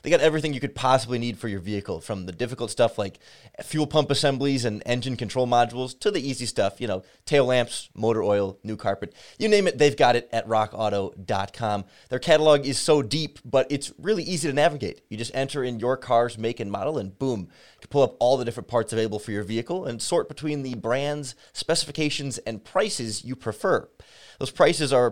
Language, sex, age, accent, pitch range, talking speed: English, male, 30-49, American, 115-150 Hz, 215 wpm